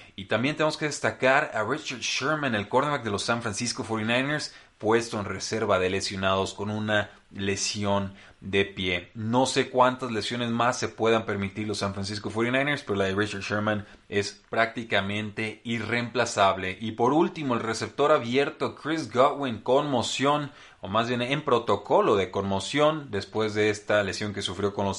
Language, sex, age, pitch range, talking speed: Spanish, male, 30-49, 100-120 Hz, 170 wpm